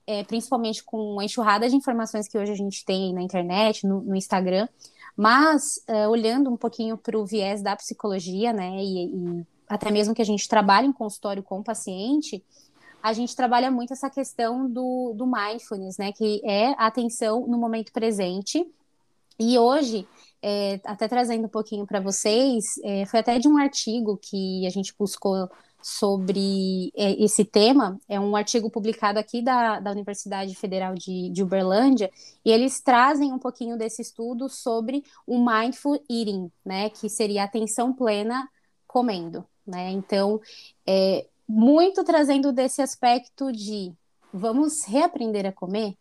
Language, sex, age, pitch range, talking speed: Portuguese, female, 20-39, 200-245 Hz, 150 wpm